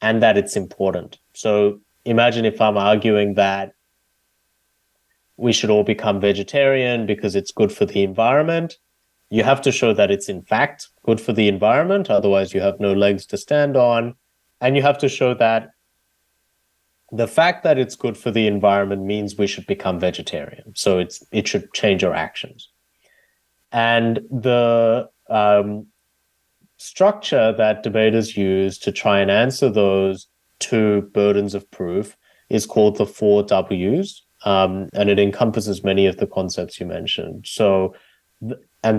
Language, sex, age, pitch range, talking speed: English, male, 30-49, 100-120 Hz, 155 wpm